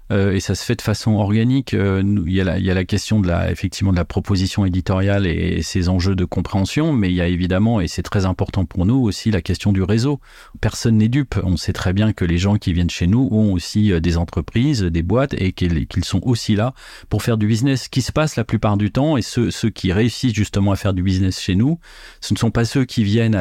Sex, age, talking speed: male, 40-59, 260 wpm